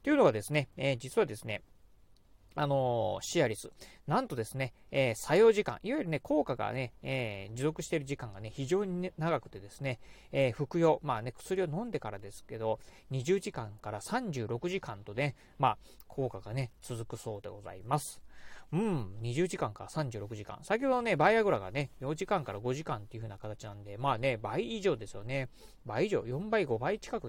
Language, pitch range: Japanese, 115-155 Hz